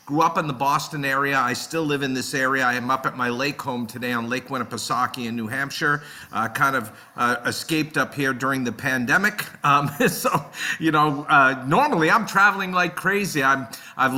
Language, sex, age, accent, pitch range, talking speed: English, male, 50-69, American, 130-155 Hz, 200 wpm